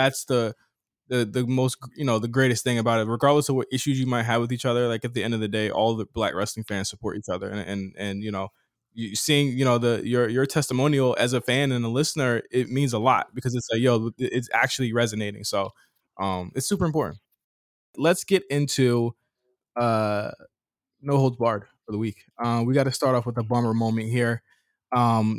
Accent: American